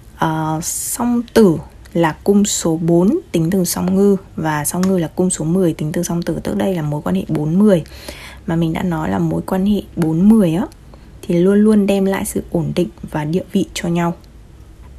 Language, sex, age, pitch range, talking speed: Vietnamese, female, 20-39, 165-200 Hz, 205 wpm